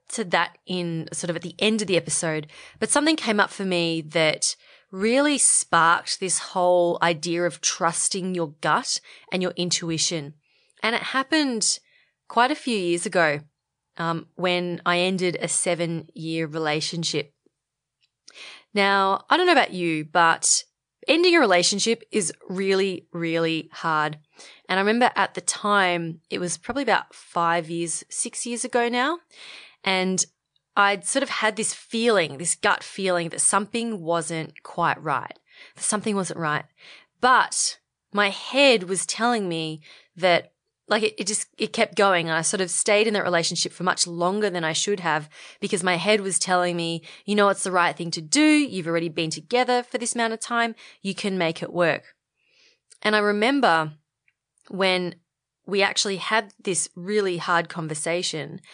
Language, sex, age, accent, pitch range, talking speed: English, female, 20-39, Australian, 165-215 Hz, 165 wpm